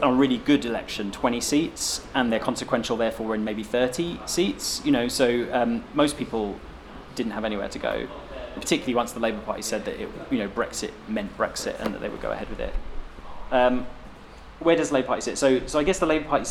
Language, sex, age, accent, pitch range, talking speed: English, male, 20-39, British, 110-135 Hz, 220 wpm